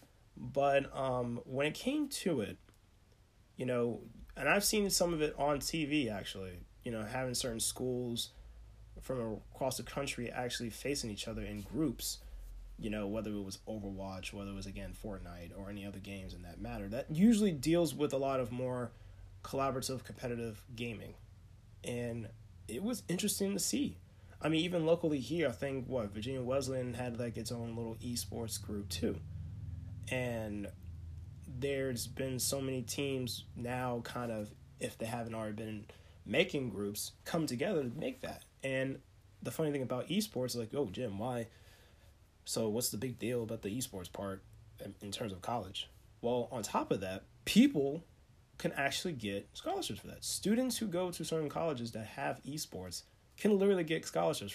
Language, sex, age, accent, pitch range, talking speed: English, male, 30-49, American, 100-135 Hz, 170 wpm